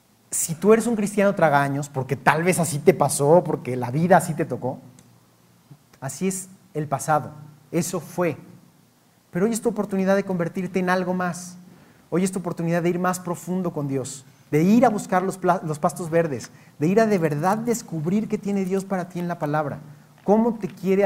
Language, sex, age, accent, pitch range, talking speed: Spanish, male, 40-59, Mexican, 155-195 Hz, 200 wpm